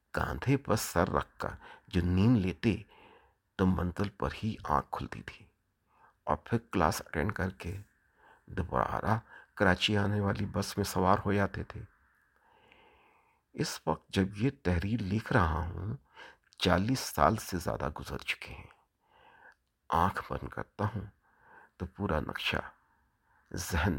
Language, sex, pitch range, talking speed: Urdu, male, 80-110 Hz, 135 wpm